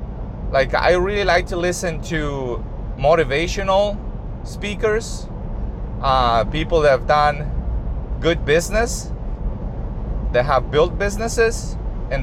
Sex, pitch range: male, 120-180 Hz